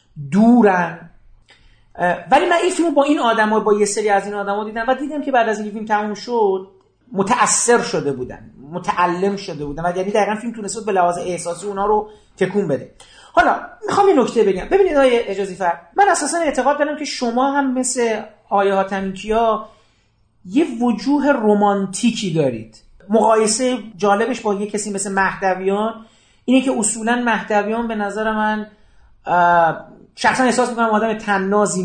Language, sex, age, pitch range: Persian, male, 40-59, 190-235 Hz